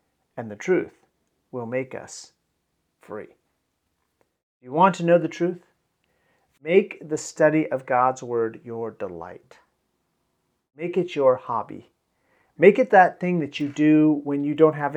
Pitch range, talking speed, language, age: 135-175 Hz, 145 wpm, English, 40-59